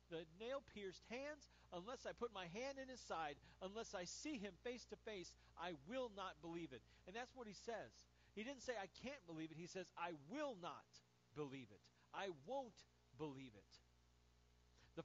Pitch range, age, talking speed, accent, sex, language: 140-235 Hz, 40-59, 190 wpm, American, male, English